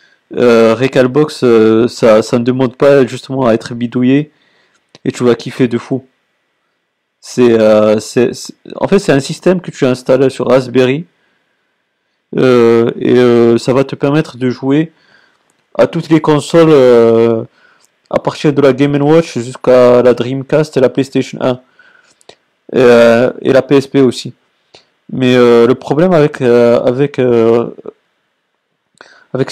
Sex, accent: male, French